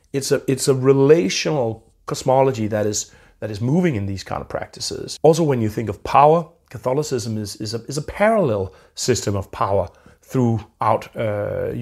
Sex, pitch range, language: male, 110-140 Hz, English